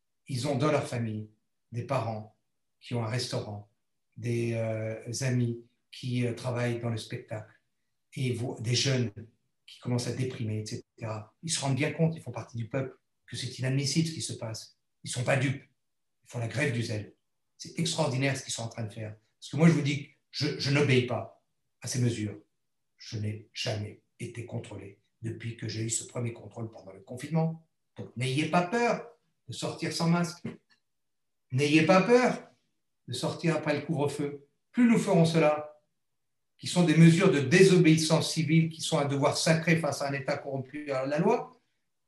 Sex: male